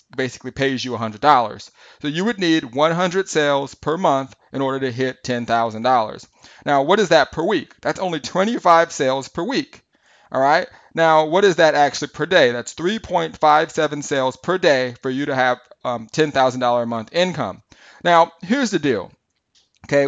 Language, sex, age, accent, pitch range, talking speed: English, male, 30-49, American, 135-170 Hz, 175 wpm